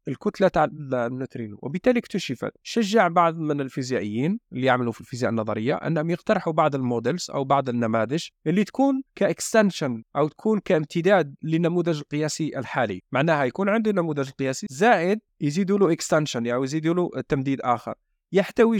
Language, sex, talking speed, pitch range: Arabic, male, 135 wpm, 140-200 Hz